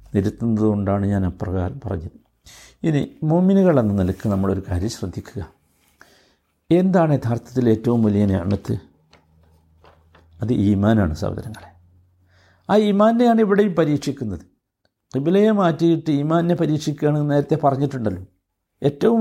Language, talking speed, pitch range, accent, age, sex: Malayalam, 95 wpm, 100-170 Hz, native, 60-79, male